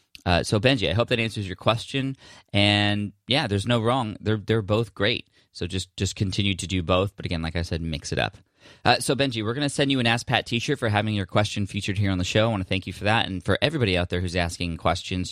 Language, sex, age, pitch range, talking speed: English, male, 20-39, 90-110 Hz, 265 wpm